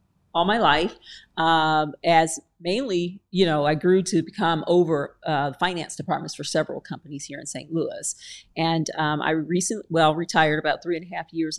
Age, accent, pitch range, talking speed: 40-59, American, 160-195 Hz, 180 wpm